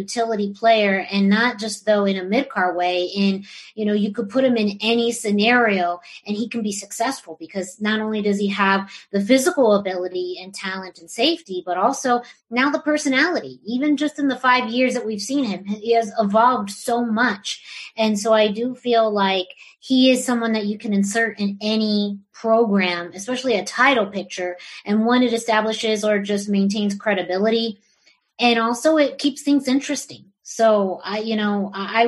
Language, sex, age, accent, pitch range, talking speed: English, female, 30-49, American, 200-240 Hz, 180 wpm